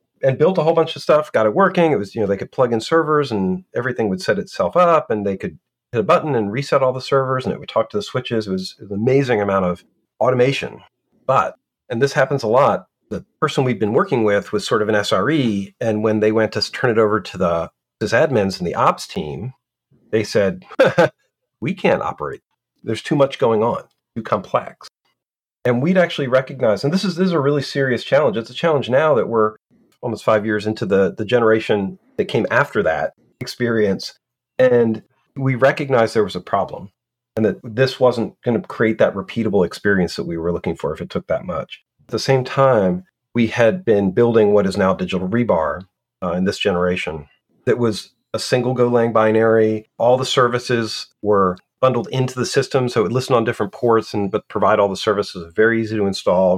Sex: male